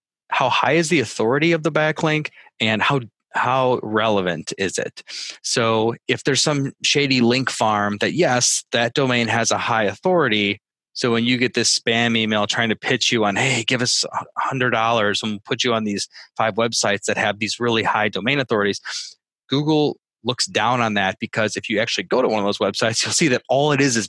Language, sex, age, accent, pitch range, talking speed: English, male, 20-39, American, 110-135 Hz, 205 wpm